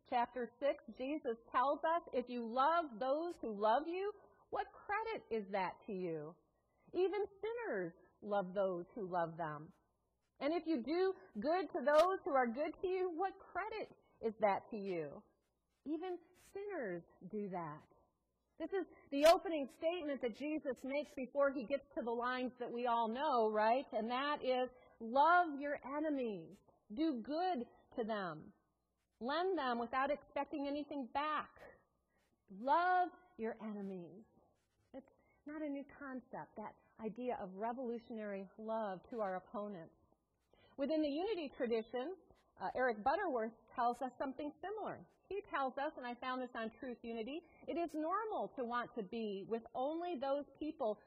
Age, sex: 40-59, female